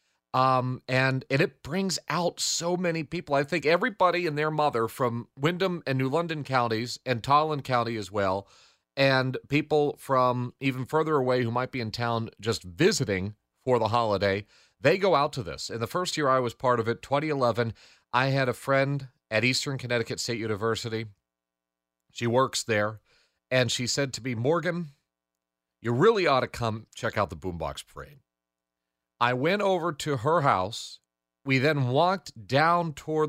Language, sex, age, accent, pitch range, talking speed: English, male, 40-59, American, 110-145 Hz, 175 wpm